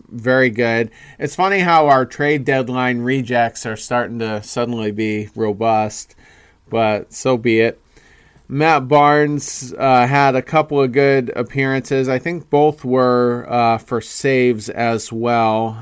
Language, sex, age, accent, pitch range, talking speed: English, male, 40-59, American, 110-130 Hz, 140 wpm